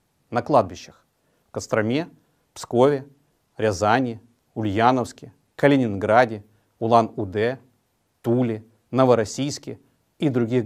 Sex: male